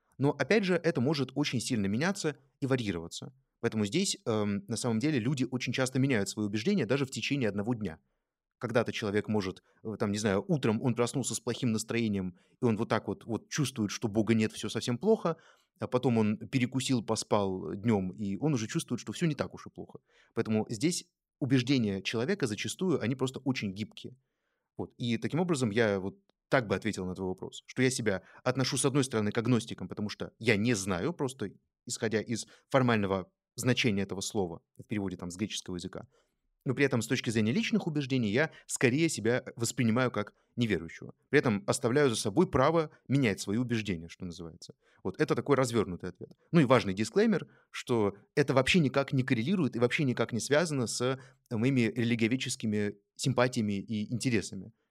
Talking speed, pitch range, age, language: 185 wpm, 105-135 Hz, 30-49, Russian